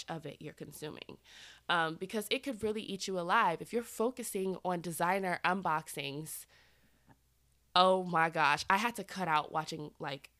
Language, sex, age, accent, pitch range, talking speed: English, female, 20-39, American, 155-205 Hz, 160 wpm